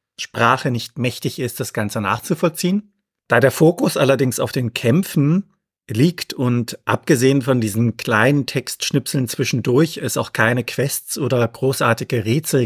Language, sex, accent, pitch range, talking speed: German, male, German, 120-155 Hz, 135 wpm